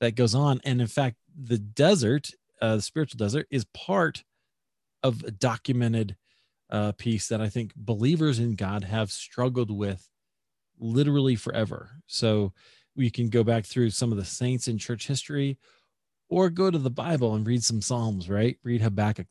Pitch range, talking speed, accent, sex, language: 105-130 Hz, 170 wpm, American, male, English